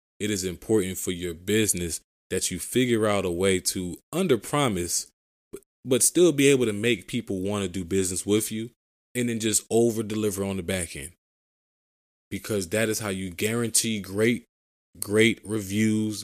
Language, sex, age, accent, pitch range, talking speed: English, male, 20-39, American, 95-115 Hz, 170 wpm